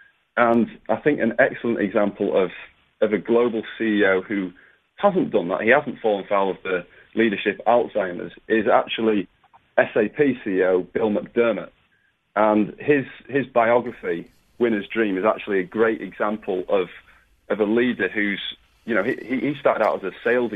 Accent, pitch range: British, 100-120 Hz